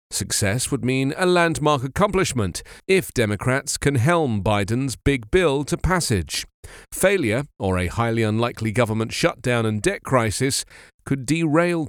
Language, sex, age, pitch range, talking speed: English, male, 40-59, 110-160 Hz, 135 wpm